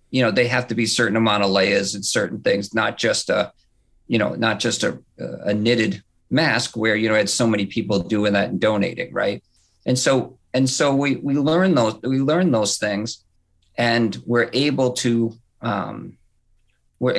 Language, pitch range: English, 100-130 Hz